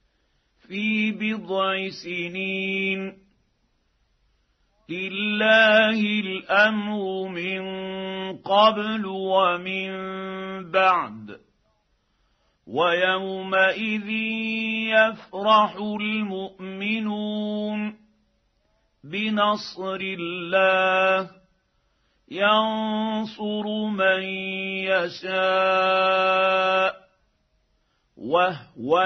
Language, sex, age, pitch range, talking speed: Arabic, male, 50-69, 190-210 Hz, 35 wpm